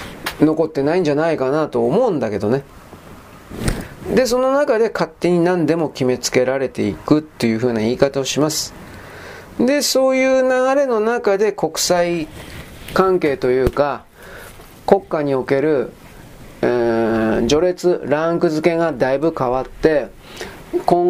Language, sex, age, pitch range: Japanese, male, 40-59, 135-190 Hz